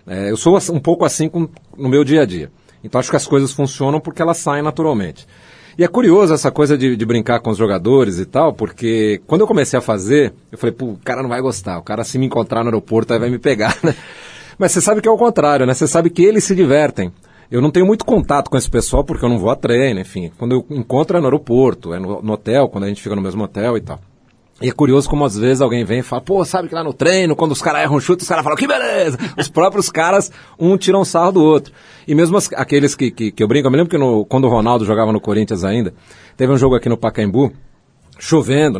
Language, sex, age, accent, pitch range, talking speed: Portuguese, male, 40-59, Brazilian, 115-160 Hz, 270 wpm